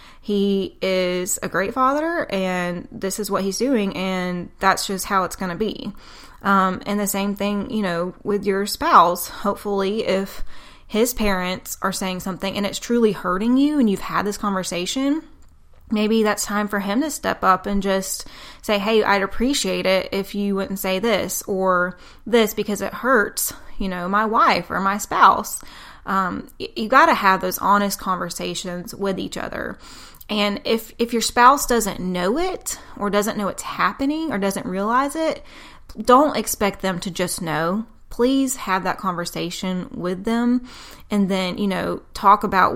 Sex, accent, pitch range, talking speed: female, American, 185-220 Hz, 175 wpm